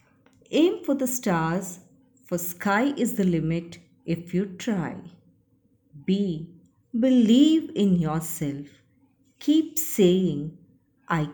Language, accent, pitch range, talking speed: Hindi, native, 160-255 Hz, 100 wpm